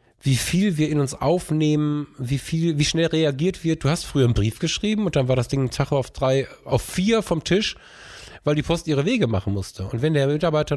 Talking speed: 235 wpm